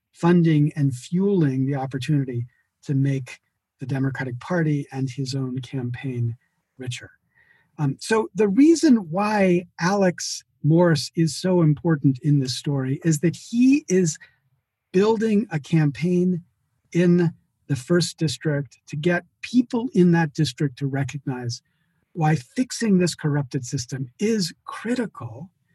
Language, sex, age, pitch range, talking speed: English, male, 50-69, 135-180 Hz, 125 wpm